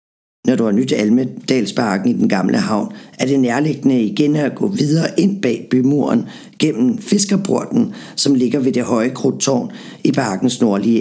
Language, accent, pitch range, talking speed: Danish, native, 115-135 Hz, 165 wpm